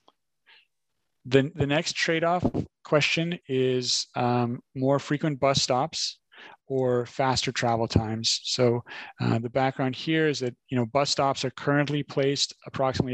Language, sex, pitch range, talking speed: English, male, 120-135 Hz, 135 wpm